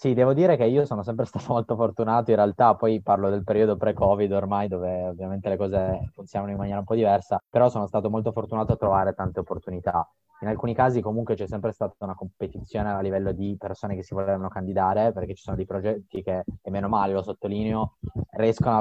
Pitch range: 95-110 Hz